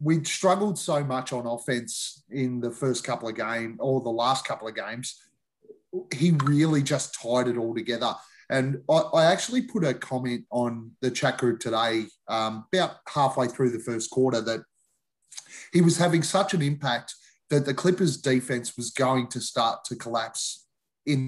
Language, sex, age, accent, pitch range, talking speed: English, male, 30-49, Australian, 120-150 Hz, 175 wpm